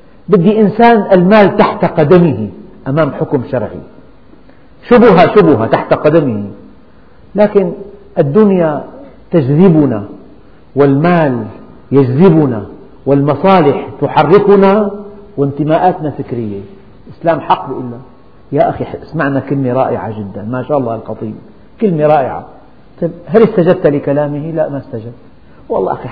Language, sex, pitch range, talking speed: Arabic, male, 130-185 Hz, 100 wpm